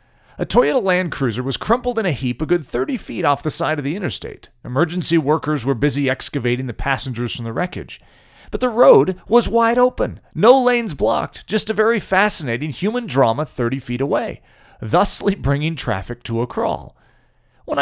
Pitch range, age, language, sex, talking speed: 125-200 Hz, 40-59, English, male, 180 wpm